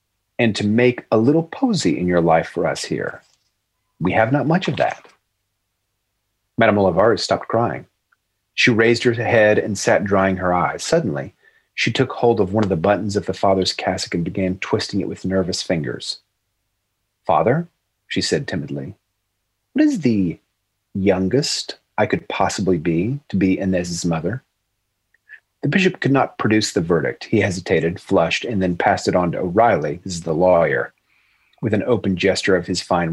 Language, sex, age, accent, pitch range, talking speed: English, male, 40-59, American, 95-125 Hz, 170 wpm